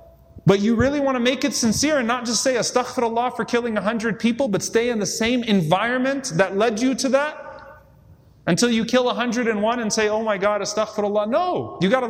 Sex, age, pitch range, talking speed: male, 30-49, 145-230 Hz, 225 wpm